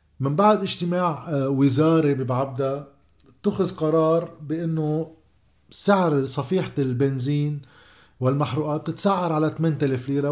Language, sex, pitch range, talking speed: Arabic, male, 140-175 Hz, 95 wpm